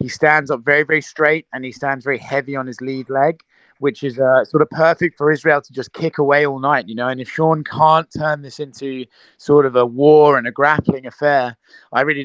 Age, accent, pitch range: 30-49, British, 130-155 Hz